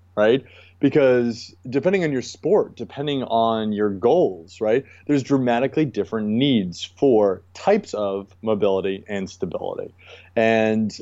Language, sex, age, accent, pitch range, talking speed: English, male, 30-49, American, 100-140 Hz, 120 wpm